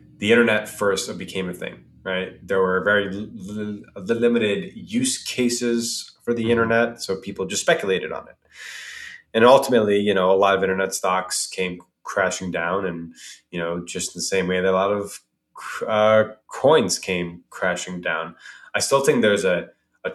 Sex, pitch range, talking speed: male, 95-110 Hz, 165 wpm